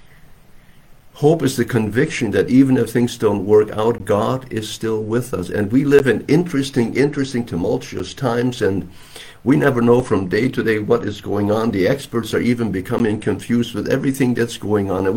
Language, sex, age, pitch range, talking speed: English, male, 60-79, 95-120 Hz, 190 wpm